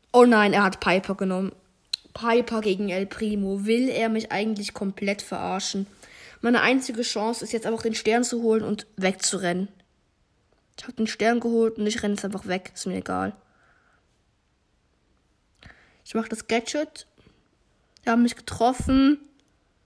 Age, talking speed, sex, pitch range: 20-39, 150 wpm, female, 210-265 Hz